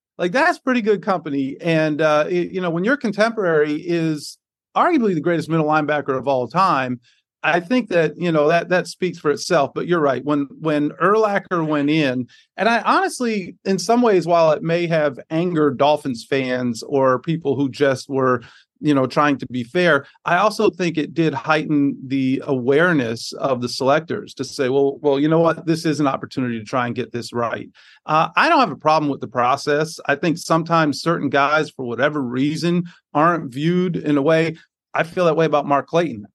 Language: English